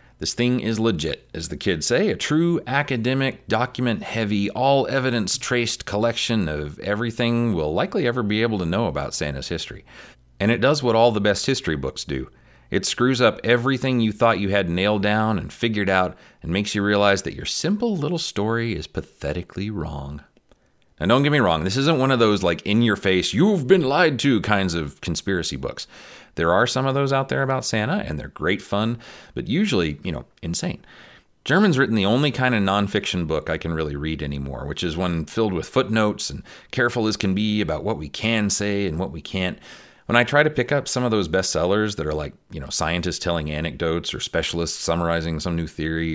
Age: 40-59